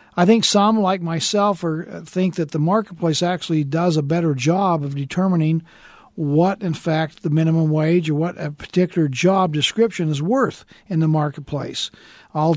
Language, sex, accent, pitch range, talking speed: English, male, American, 155-185 Hz, 165 wpm